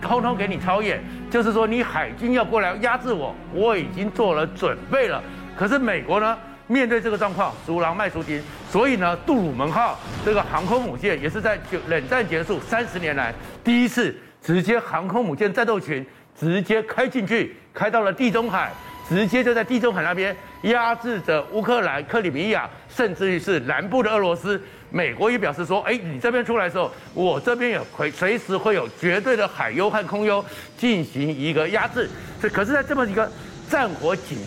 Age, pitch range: 50-69, 175-235 Hz